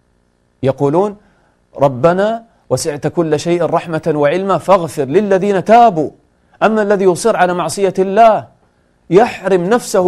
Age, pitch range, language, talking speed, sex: 40-59, 140-195 Hz, English, 105 wpm, male